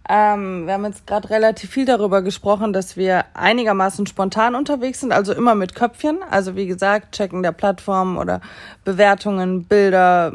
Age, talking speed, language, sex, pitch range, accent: 20-39, 160 wpm, German, female, 170-200 Hz, German